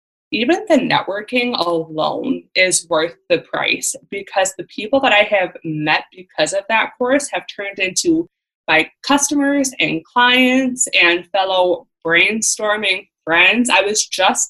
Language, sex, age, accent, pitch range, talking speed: English, female, 20-39, American, 170-245 Hz, 135 wpm